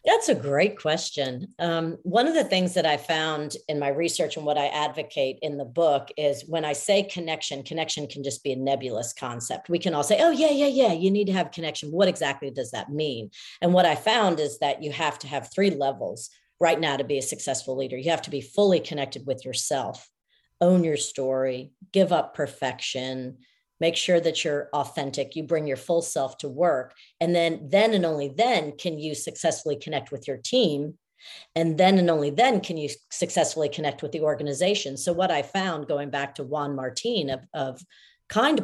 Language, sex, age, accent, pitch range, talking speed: English, female, 40-59, American, 140-180 Hz, 210 wpm